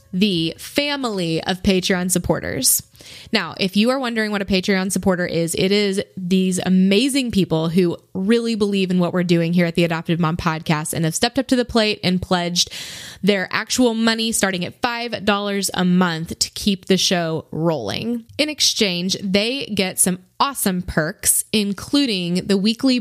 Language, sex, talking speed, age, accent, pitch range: English, female, 170 wpm, 20-39, American, 170-210 Hz